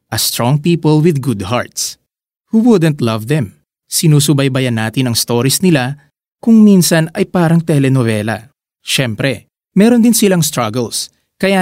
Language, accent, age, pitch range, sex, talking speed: Filipino, native, 20-39, 125-170 Hz, male, 135 wpm